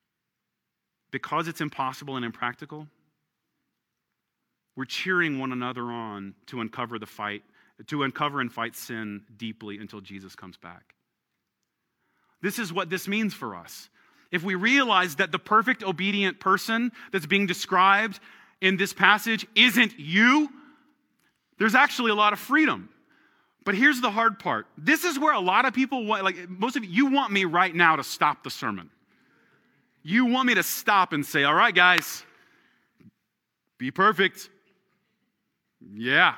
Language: English